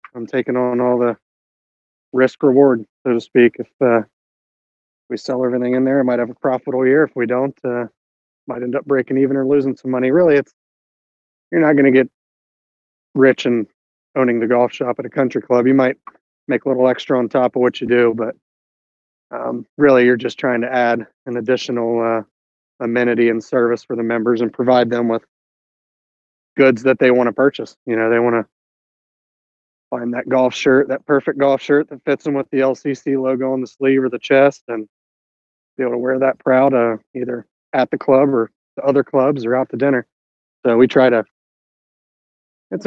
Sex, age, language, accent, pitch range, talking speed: male, 30-49, English, American, 115-135 Hz, 200 wpm